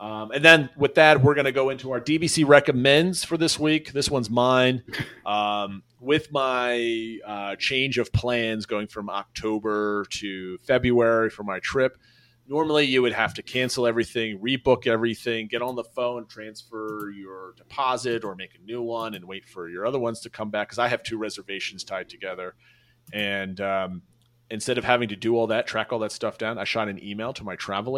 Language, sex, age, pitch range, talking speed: English, male, 30-49, 100-130 Hz, 195 wpm